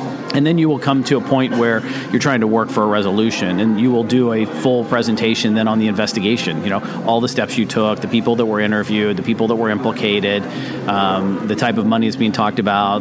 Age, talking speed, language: 40-59, 245 wpm, English